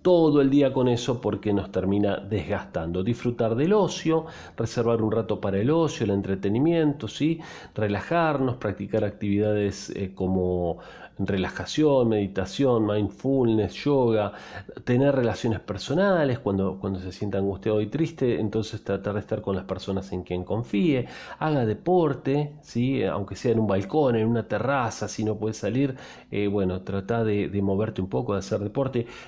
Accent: Argentinian